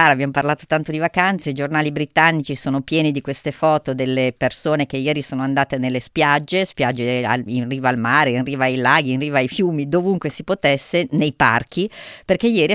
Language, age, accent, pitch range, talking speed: Italian, 40-59, native, 130-155 Hz, 195 wpm